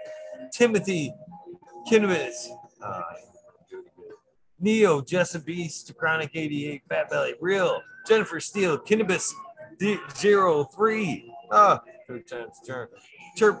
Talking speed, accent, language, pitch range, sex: 95 wpm, American, English, 165-220 Hz, male